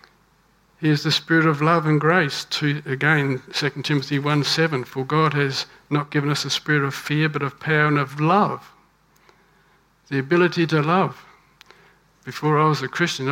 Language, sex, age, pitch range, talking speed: English, male, 60-79, 135-160 Hz, 170 wpm